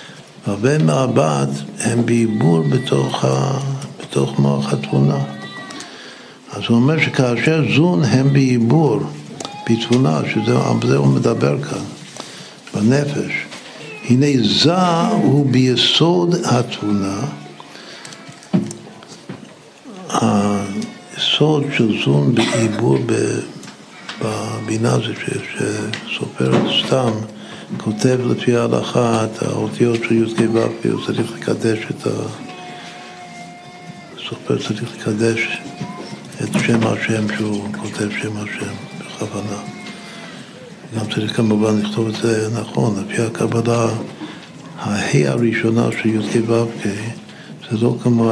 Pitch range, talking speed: 105-125 Hz, 95 wpm